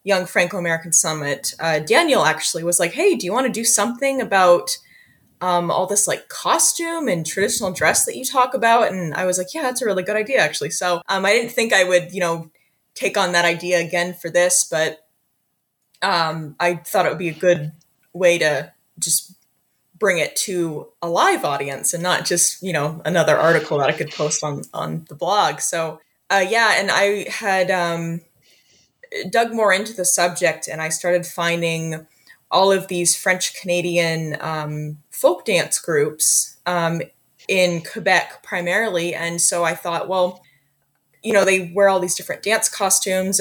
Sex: female